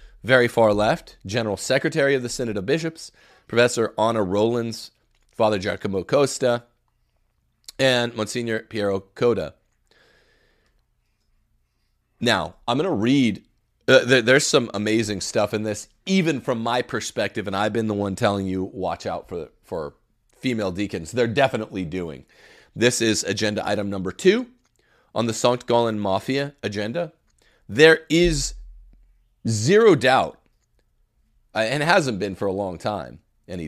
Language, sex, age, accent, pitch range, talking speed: English, male, 30-49, American, 105-125 Hz, 140 wpm